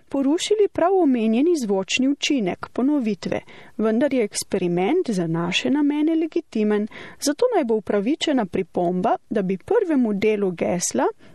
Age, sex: 30-49, female